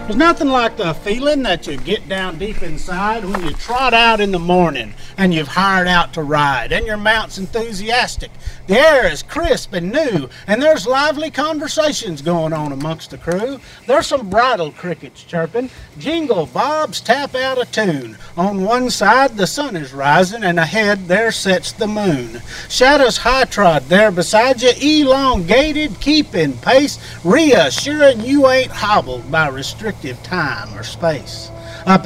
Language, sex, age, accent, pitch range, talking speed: English, male, 50-69, American, 165-245 Hz, 160 wpm